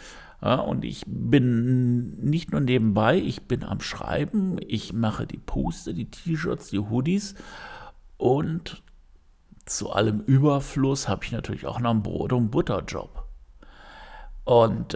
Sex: male